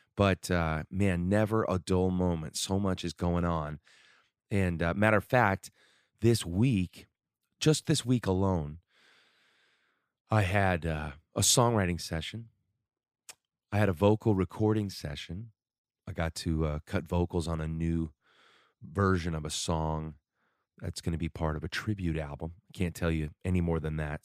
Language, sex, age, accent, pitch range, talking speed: English, male, 30-49, American, 80-105 Hz, 160 wpm